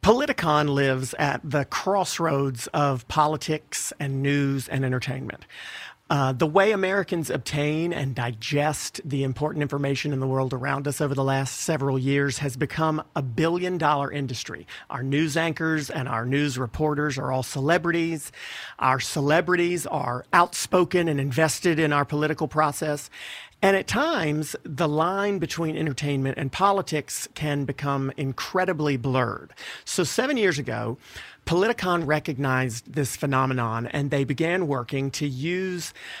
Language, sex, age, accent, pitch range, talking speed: English, male, 40-59, American, 135-160 Hz, 140 wpm